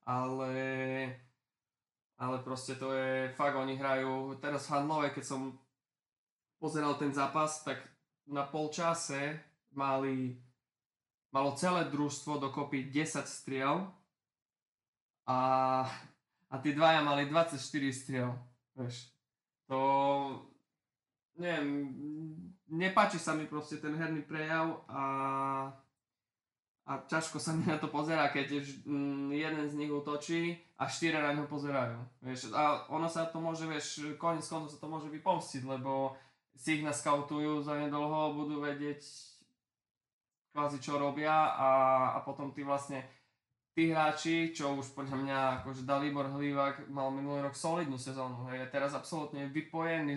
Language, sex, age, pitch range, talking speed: Slovak, male, 20-39, 135-150 Hz, 120 wpm